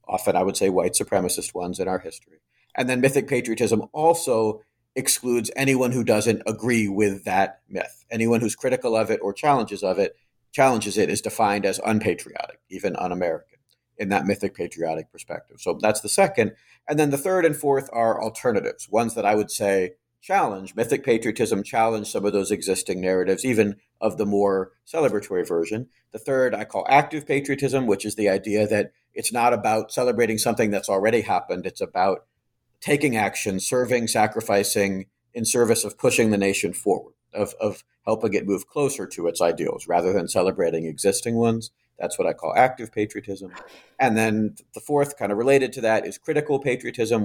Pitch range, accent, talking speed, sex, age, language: 100-130 Hz, American, 180 wpm, male, 50-69, English